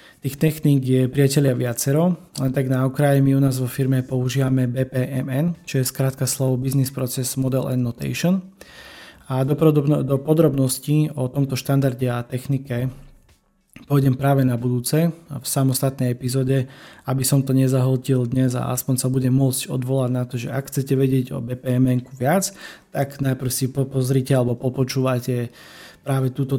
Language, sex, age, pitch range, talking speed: Slovak, male, 20-39, 125-140 Hz, 160 wpm